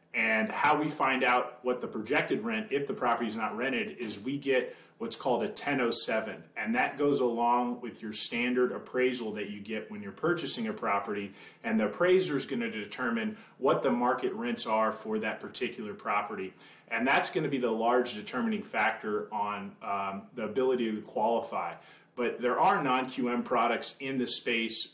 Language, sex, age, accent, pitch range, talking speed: English, male, 30-49, American, 110-140 Hz, 185 wpm